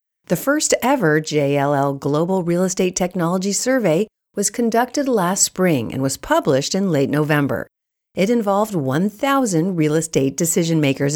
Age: 50-69